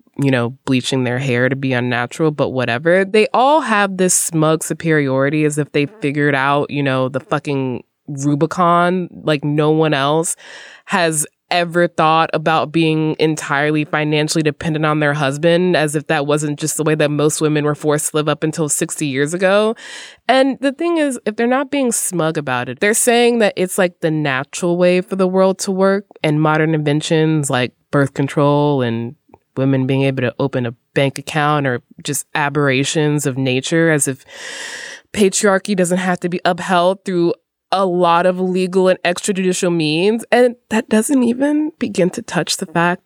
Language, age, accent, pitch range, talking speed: English, 20-39, American, 140-180 Hz, 180 wpm